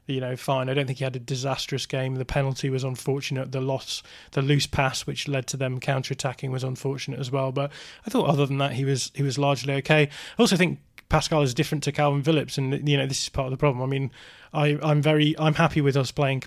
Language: English